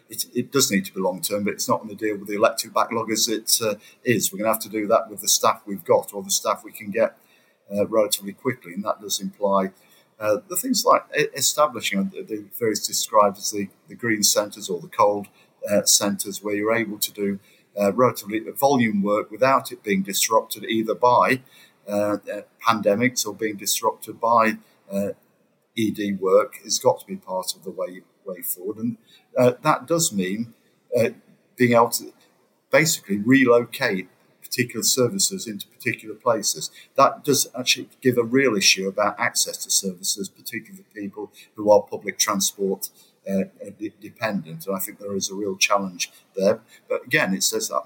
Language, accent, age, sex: English, British, 50-69, male